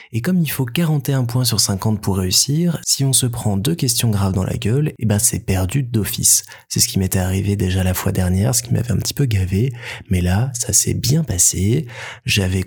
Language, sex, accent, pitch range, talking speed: French, male, French, 95-120 Hz, 225 wpm